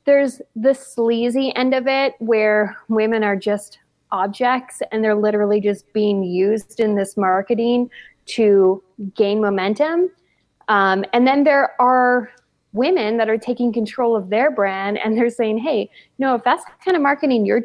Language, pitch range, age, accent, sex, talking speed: English, 205-250 Hz, 30-49, American, female, 170 wpm